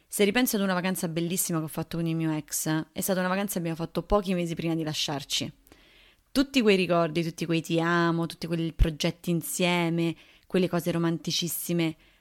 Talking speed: 190 wpm